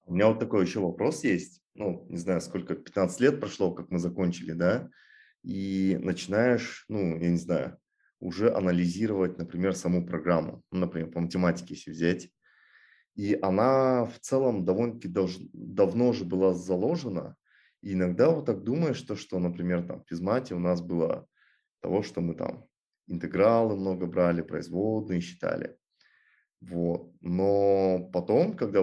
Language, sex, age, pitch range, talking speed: Russian, male, 30-49, 90-105 Hz, 150 wpm